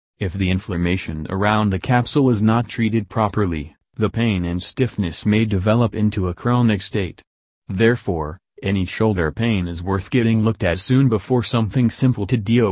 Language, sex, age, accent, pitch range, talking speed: English, male, 40-59, American, 90-115 Hz, 165 wpm